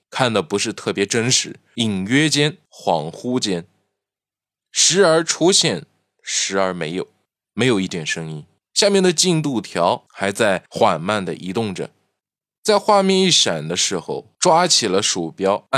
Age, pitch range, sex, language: 20-39, 100-160 Hz, male, Chinese